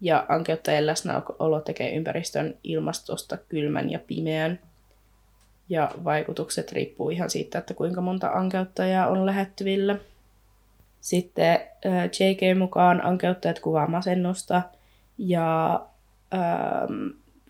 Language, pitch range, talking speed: Finnish, 140-190 Hz, 95 wpm